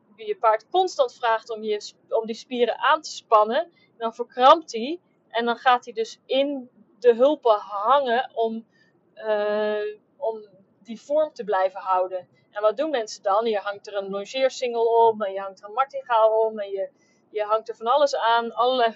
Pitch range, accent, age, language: 210-265 Hz, Dutch, 30-49, Dutch